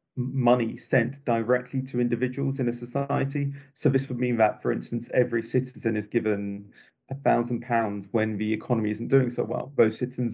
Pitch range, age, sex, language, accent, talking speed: 120-140 Hz, 30-49, male, English, British, 180 wpm